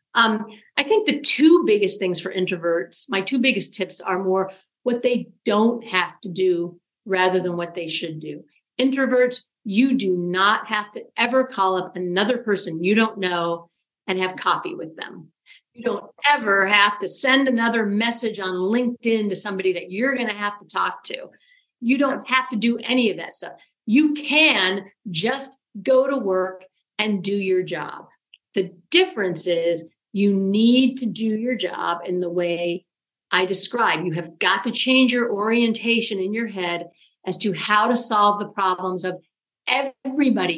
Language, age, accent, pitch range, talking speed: English, 50-69, American, 185-245 Hz, 175 wpm